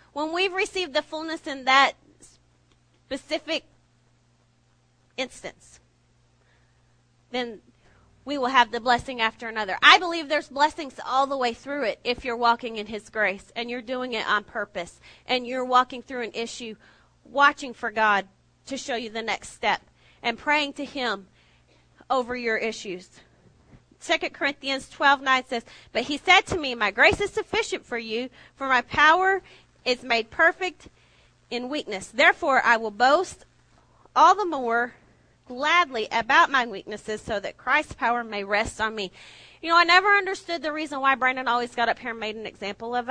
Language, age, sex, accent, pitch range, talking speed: English, 30-49, female, American, 210-285 Hz, 170 wpm